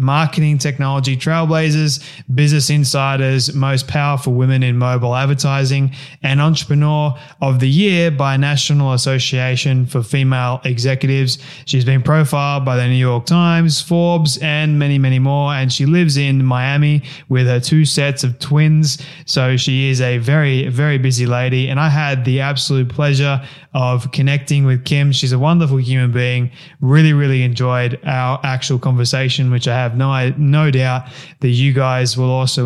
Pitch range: 130-150 Hz